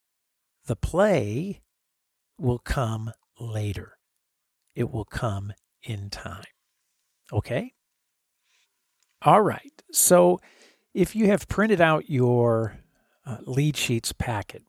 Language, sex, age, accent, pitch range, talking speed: English, male, 50-69, American, 110-155 Hz, 100 wpm